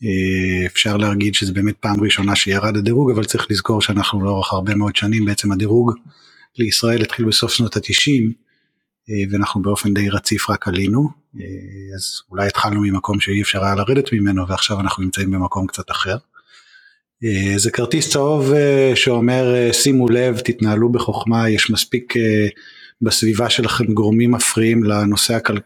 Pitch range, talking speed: 100-120 Hz, 140 wpm